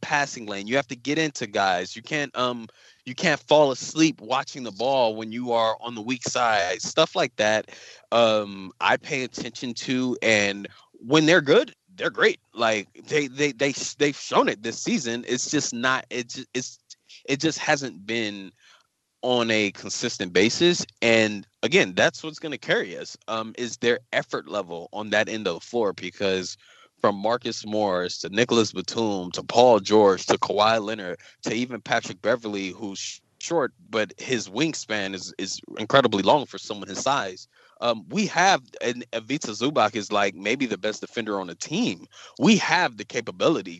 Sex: male